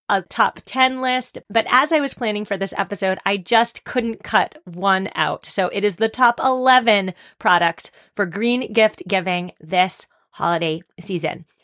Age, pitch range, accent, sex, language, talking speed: 30-49, 190-240 Hz, American, female, English, 165 wpm